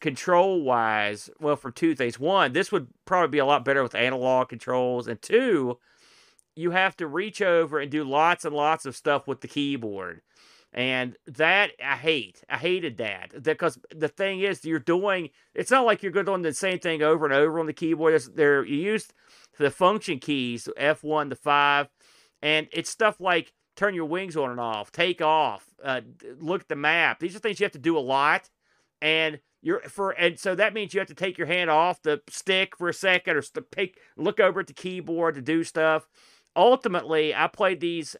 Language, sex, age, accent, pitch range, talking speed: English, male, 40-59, American, 135-175 Hz, 205 wpm